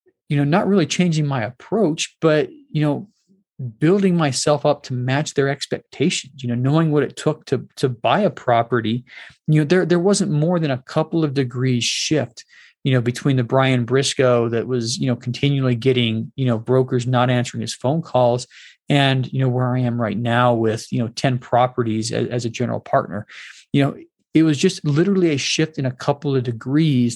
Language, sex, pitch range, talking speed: English, male, 125-155 Hz, 200 wpm